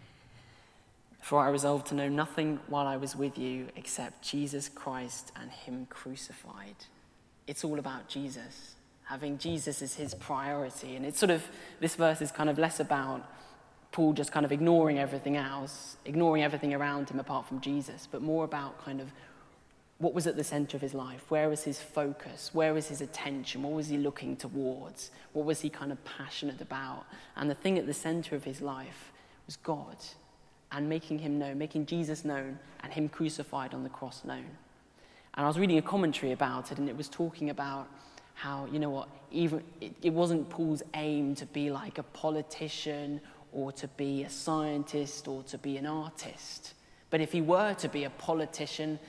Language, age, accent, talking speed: English, 20-39, British, 190 wpm